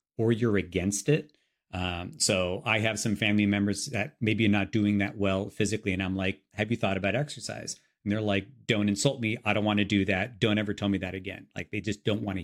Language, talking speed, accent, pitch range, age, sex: English, 245 wpm, American, 100-130 Hz, 40-59, male